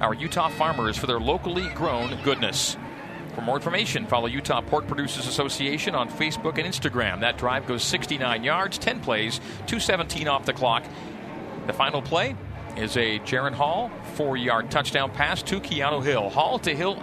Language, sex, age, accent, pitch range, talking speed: English, male, 40-59, American, 125-160 Hz, 165 wpm